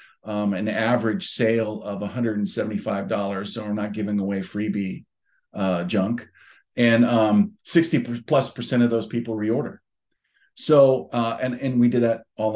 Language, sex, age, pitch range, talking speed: English, male, 40-59, 110-130 Hz, 155 wpm